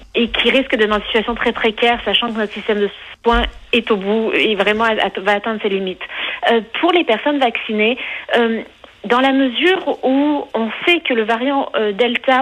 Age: 40-59